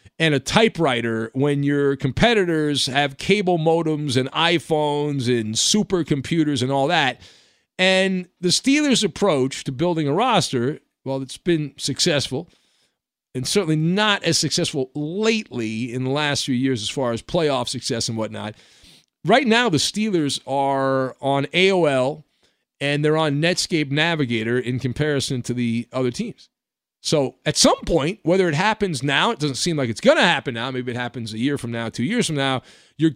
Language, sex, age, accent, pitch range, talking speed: English, male, 50-69, American, 130-175 Hz, 170 wpm